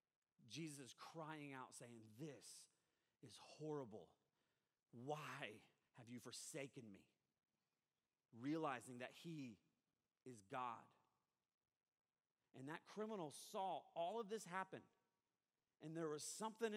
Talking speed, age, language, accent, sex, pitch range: 105 wpm, 40-59, English, American, male, 130-190 Hz